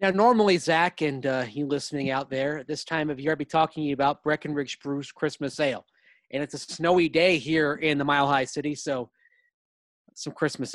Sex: male